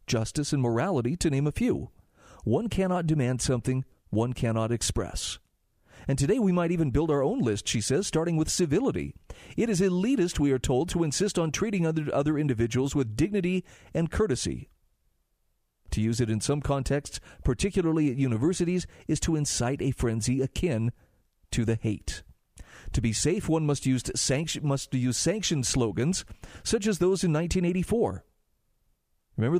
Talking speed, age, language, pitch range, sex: 160 wpm, 40-59, English, 115-170 Hz, male